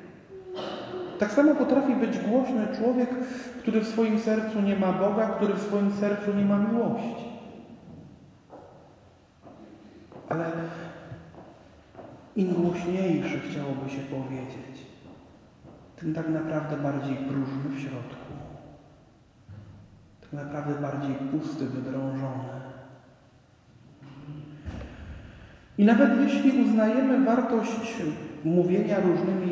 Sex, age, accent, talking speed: male, 40-59, native, 90 wpm